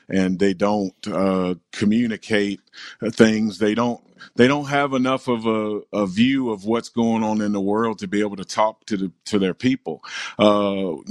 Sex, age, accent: male, 40-59, American